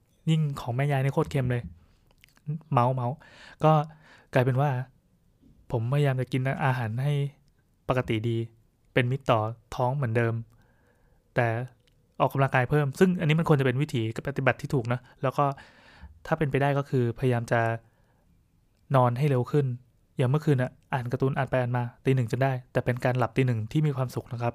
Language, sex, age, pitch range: Thai, male, 20-39, 115-140 Hz